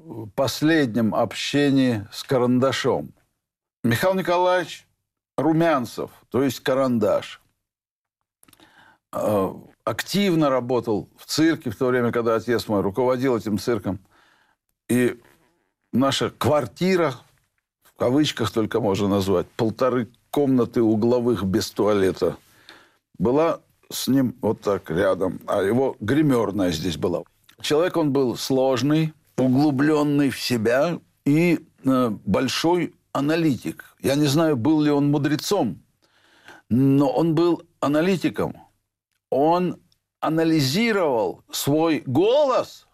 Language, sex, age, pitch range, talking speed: Russian, male, 60-79, 125-170 Hz, 100 wpm